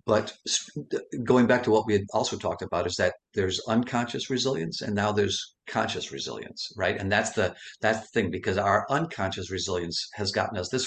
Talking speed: 190 wpm